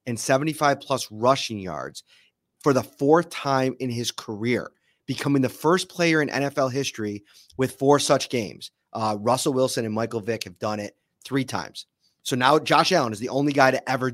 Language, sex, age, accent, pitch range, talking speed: English, male, 30-49, American, 115-145 Hz, 185 wpm